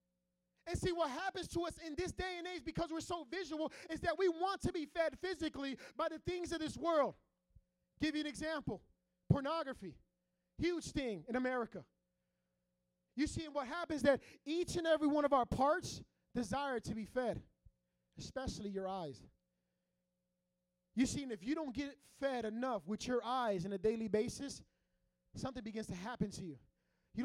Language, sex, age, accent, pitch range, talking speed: English, male, 30-49, American, 195-300 Hz, 175 wpm